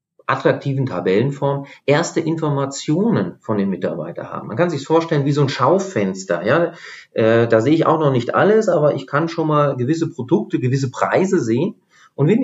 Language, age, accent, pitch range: German, 40-59, German, 120-160 Hz